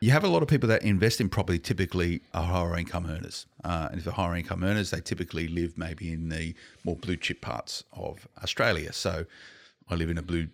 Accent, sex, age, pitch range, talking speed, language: Australian, male, 40-59, 85-100 Hz, 230 wpm, English